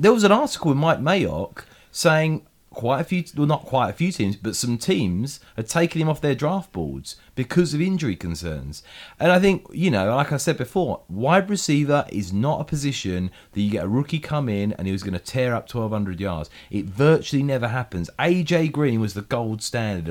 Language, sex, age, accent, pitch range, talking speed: English, male, 30-49, British, 95-145 Hz, 215 wpm